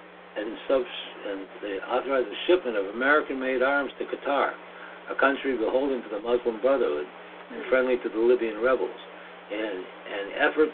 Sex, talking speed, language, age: male, 160 wpm, English, 60-79